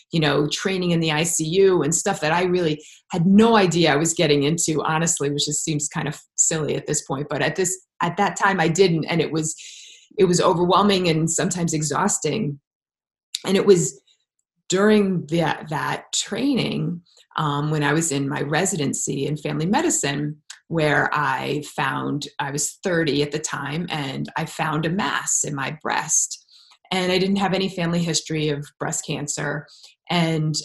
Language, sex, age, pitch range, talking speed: English, female, 30-49, 150-190 Hz, 175 wpm